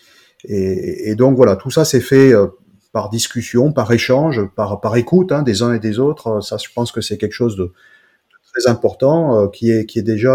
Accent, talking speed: French, 225 wpm